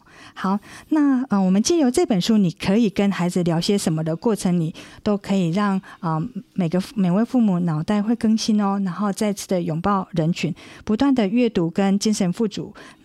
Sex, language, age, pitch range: female, Chinese, 50-69, 180-225 Hz